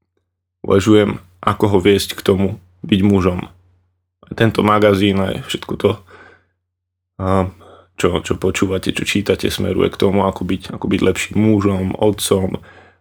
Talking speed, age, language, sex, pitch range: 130 wpm, 20-39, Slovak, male, 90-105 Hz